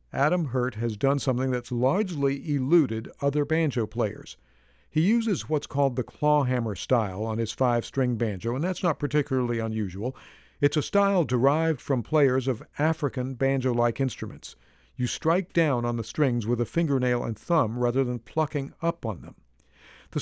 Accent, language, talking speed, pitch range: American, English, 165 wpm, 120-150 Hz